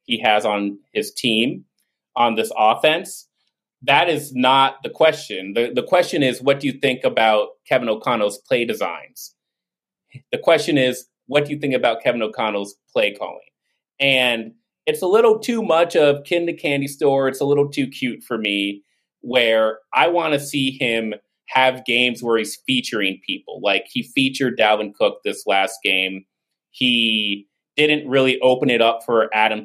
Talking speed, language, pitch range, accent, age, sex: 170 wpm, English, 110-145 Hz, American, 30-49, male